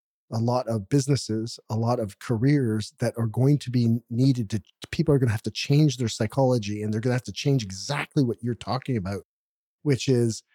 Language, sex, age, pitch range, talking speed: English, male, 30-49, 115-145 Hz, 215 wpm